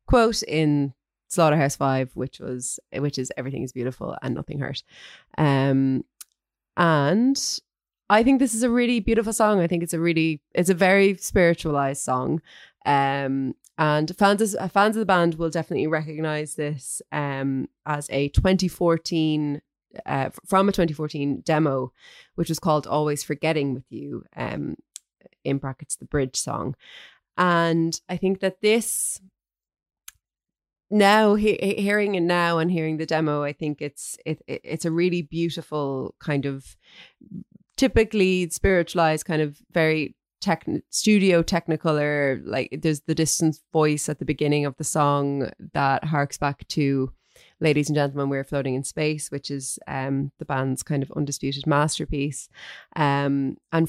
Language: English